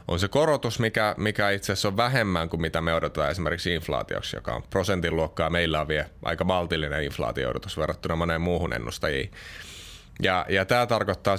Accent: native